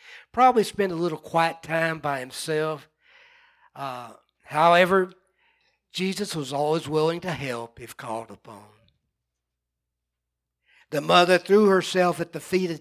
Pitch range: 135-190 Hz